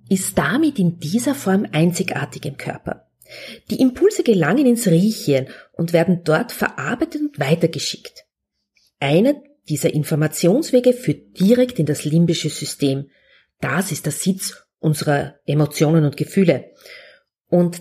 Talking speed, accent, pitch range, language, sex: 125 wpm, Austrian, 150-235 Hz, German, female